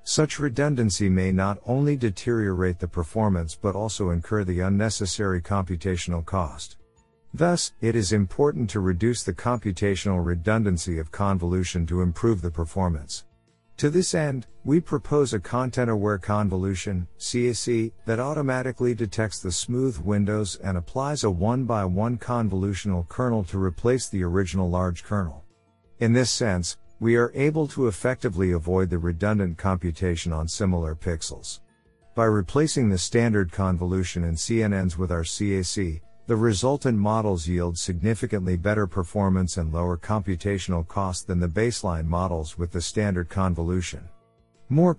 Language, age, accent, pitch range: English, 50-69, American, 90-115 Hz